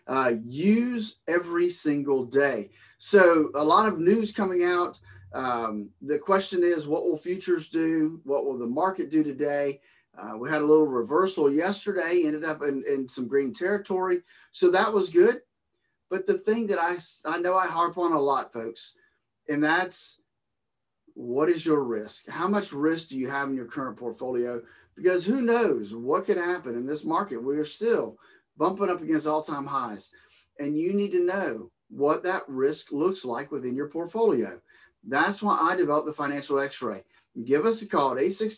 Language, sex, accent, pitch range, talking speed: English, male, American, 140-185 Hz, 180 wpm